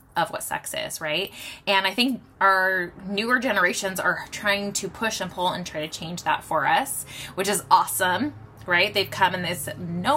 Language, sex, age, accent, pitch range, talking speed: English, female, 20-39, American, 165-205 Hz, 195 wpm